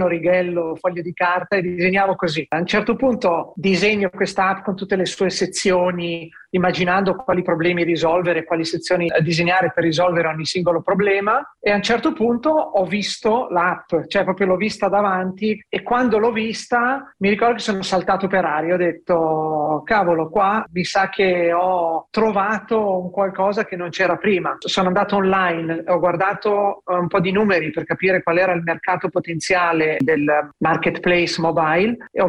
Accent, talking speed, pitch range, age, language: native, 170 wpm, 170-200 Hz, 40-59, Italian